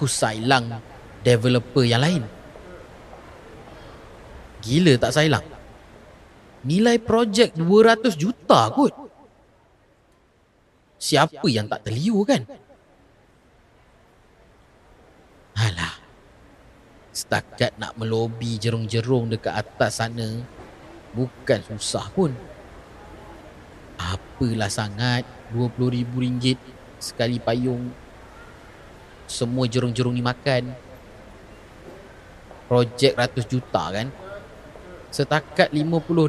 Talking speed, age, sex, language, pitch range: 80 wpm, 30-49, male, Malay, 115-165 Hz